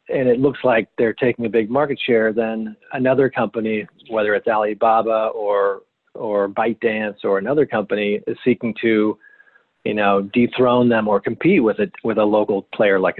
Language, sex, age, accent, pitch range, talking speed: English, male, 40-59, American, 110-130 Hz, 175 wpm